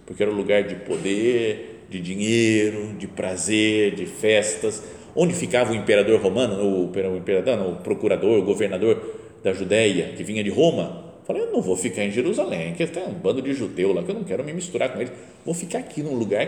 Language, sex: Portuguese, male